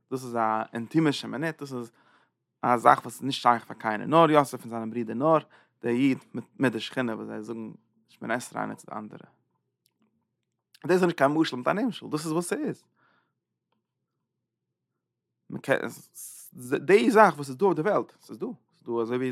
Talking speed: 155 wpm